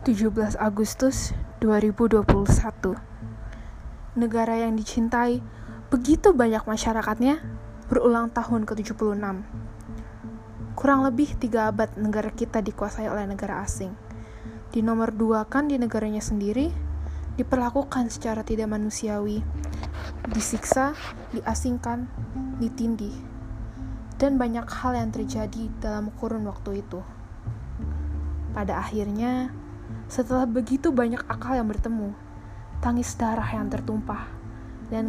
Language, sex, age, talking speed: Indonesian, female, 10-29, 95 wpm